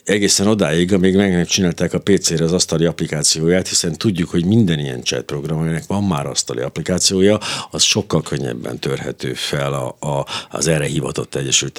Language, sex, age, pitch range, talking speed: Hungarian, male, 60-79, 80-105 Hz, 165 wpm